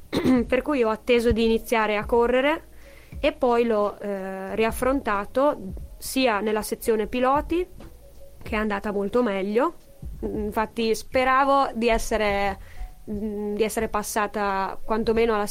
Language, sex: Italian, female